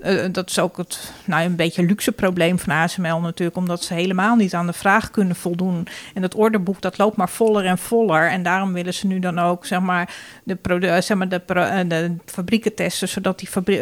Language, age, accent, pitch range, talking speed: Dutch, 40-59, Dutch, 180-215 Hz, 195 wpm